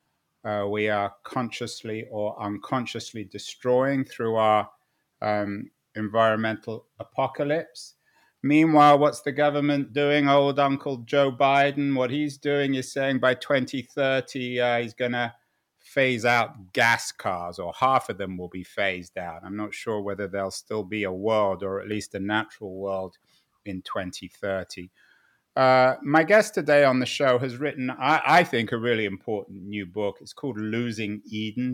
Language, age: English, 30-49